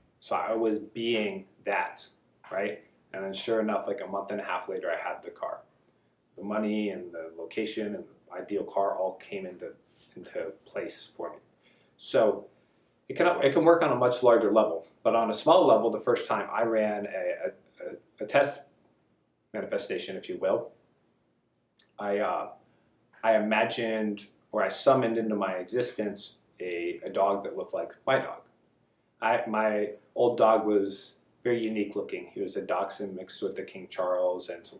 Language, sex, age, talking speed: English, male, 30-49, 175 wpm